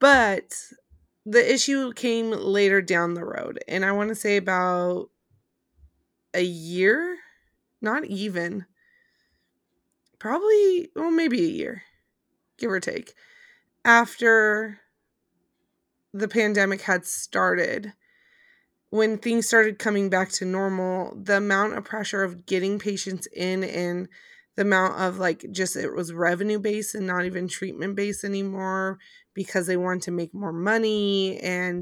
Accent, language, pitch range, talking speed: American, English, 180-215 Hz, 130 wpm